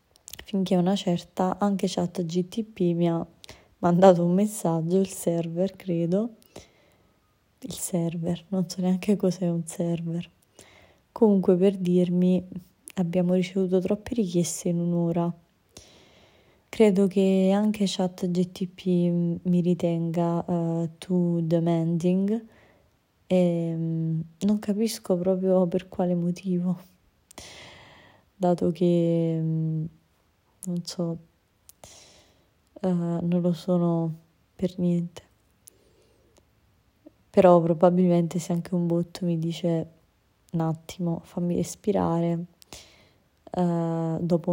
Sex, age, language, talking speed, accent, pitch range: female, 20-39, Italian, 95 wpm, native, 165-180 Hz